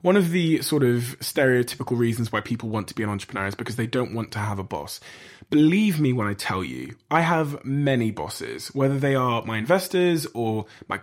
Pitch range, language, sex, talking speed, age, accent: 110-145 Hz, English, male, 220 wpm, 20-39, British